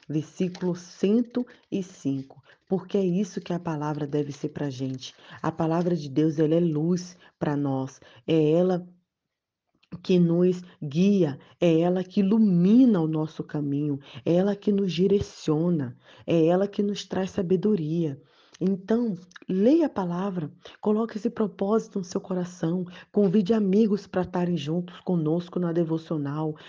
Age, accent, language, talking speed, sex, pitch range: 20-39, Brazilian, Portuguese, 140 wpm, female, 150-195 Hz